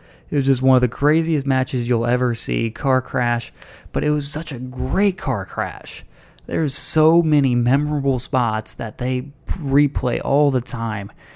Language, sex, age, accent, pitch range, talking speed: English, male, 20-39, American, 115-135 Hz, 170 wpm